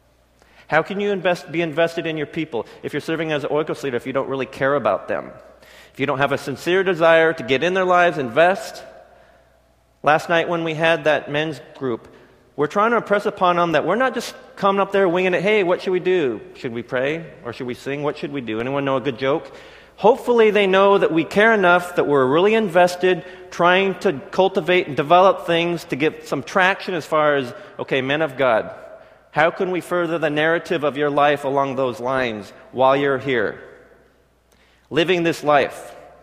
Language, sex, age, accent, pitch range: Korean, male, 30-49, American, 140-185 Hz